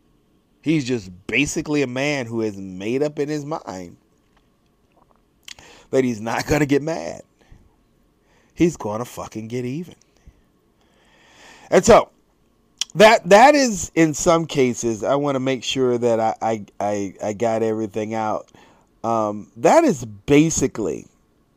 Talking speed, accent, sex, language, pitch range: 135 wpm, American, male, English, 110-150 Hz